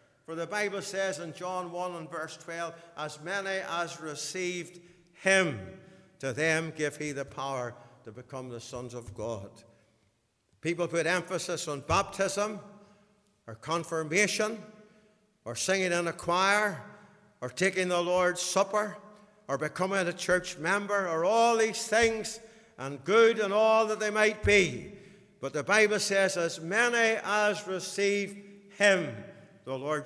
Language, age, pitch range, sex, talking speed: English, 60-79, 155-220 Hz, male, 145 wpm